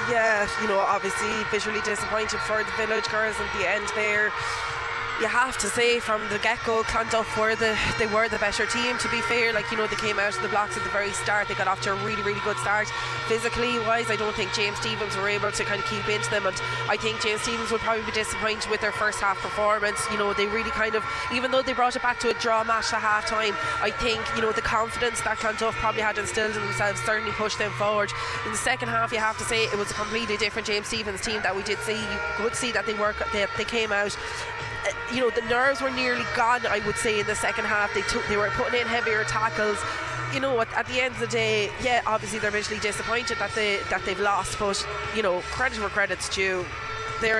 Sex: female